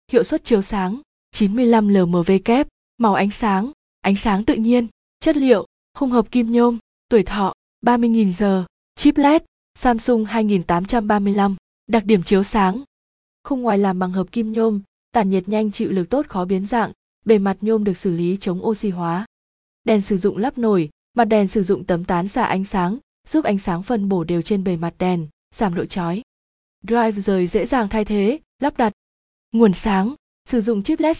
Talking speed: 190 wpm